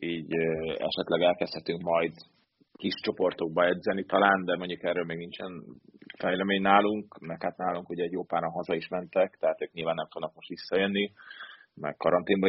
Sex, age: male, 30-49